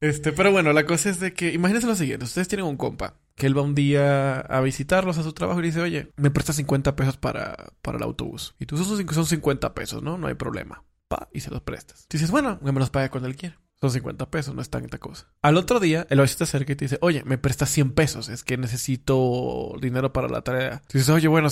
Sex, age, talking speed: male, 20-39, 255 wpm